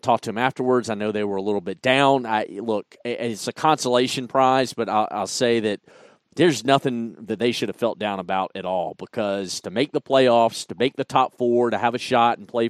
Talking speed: 235 wpm